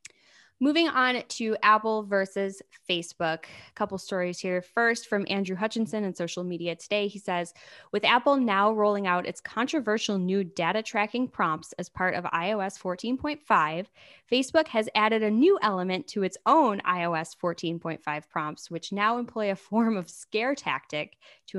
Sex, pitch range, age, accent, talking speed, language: female, 180-230 Hz, 10-29, American, 160 wpm, English